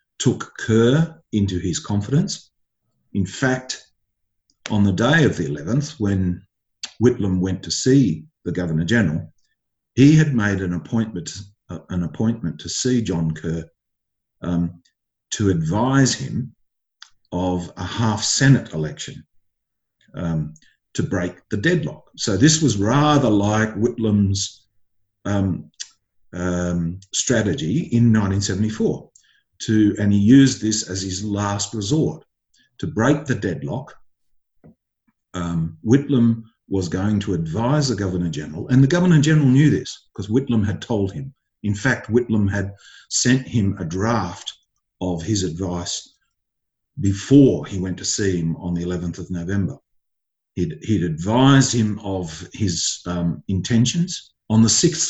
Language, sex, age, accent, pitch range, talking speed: English, male, 50-69, Australian, 90-120 Hz, 130 wpm